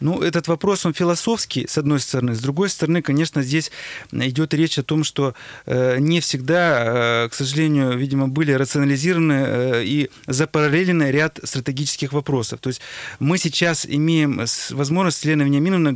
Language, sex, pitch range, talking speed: Russian, male, 135-160 Hz, 145 wpm